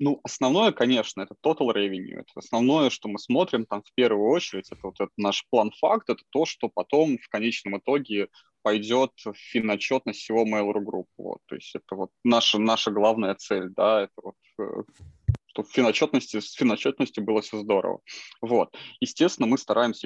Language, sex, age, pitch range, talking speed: Russian, male, 20-39, 105-130 Hz, 170 wpm